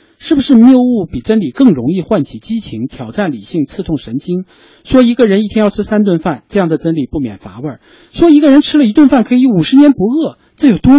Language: Chinese